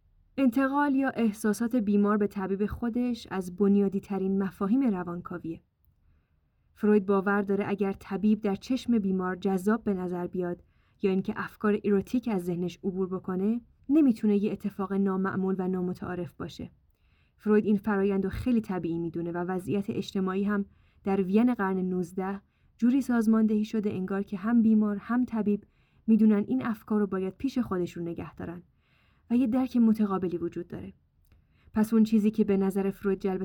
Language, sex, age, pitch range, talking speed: Persian, female, 10-29, 185-220 Hz, 150 wpm